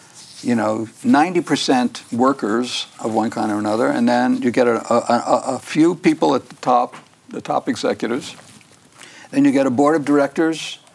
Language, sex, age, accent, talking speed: English, male, 60-79, American, 175 wpm